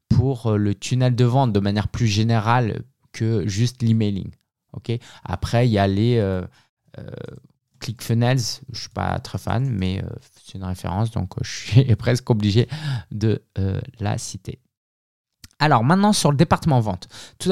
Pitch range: 100-125 Hz